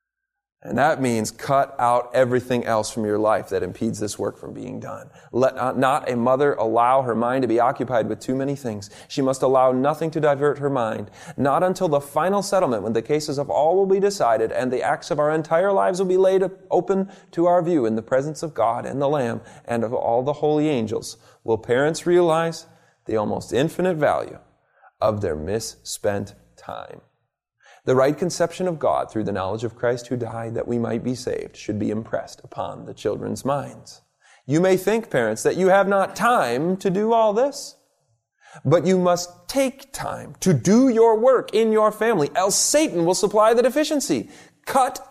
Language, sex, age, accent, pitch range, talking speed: English, male, 30-49, American, 125-200 Hz, 195 wpm